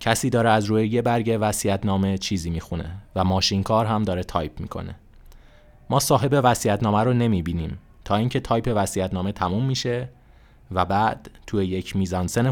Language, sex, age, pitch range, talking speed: Persian, male, 20-39, 90-115 Hz, 155 wpm